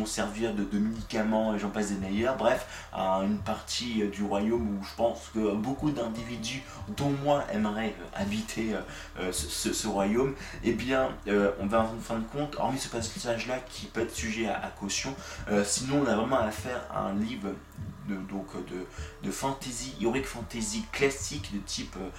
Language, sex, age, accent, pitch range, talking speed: French, male, 20-39, French, 100-125 Hz, 180 wpm